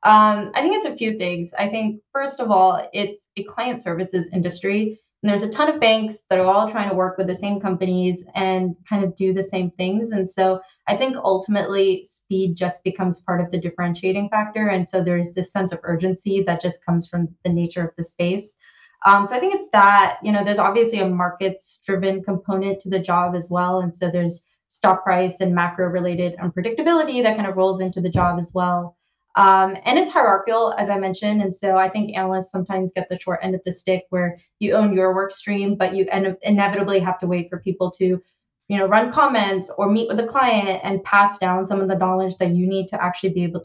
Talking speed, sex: 225 wpm, female